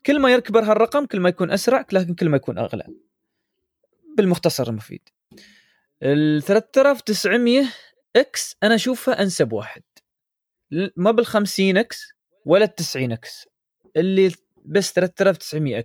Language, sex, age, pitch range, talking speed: Arabic, male, 20-39, 140-215 Hz, 125 wpm